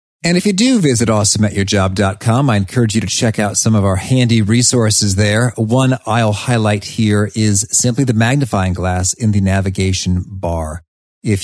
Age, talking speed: 40-59, 170 wpm